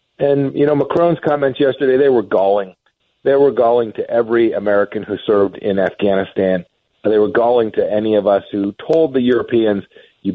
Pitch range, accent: 105-145 Hz, American